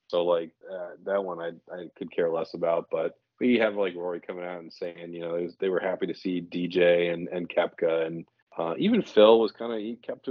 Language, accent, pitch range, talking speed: English, American, 90-110 Hz, 245 wpm